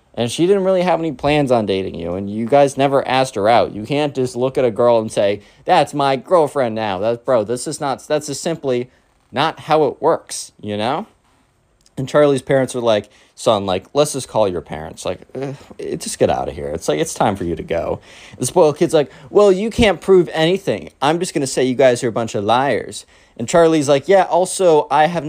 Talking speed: 235 wpm